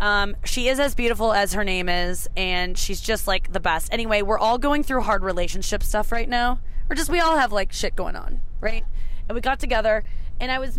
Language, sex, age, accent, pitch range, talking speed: English, female, 20-39, American, 180-245 Hz, 235 wpm